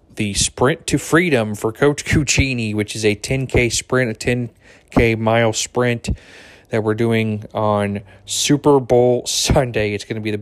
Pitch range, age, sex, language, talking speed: 100-115 Hz, 20-39, male, English, 160 wpm